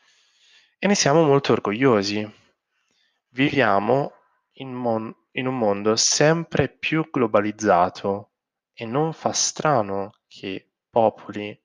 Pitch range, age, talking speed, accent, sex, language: 105-135 Hz, 20-39, 105 wpm, native, male, Italian